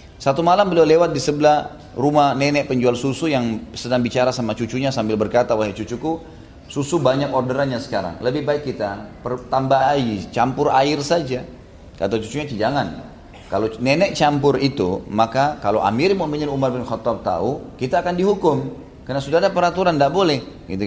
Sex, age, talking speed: male, 30-49, 165 wpm